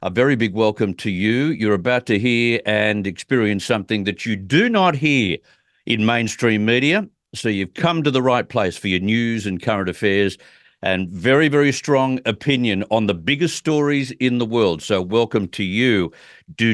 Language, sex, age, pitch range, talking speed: English, male, 50-69, 105-135 Hz, 185 wpm